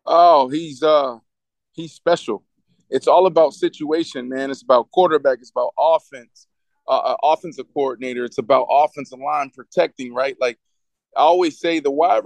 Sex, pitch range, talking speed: male, 125-175 Hz, 155 wpm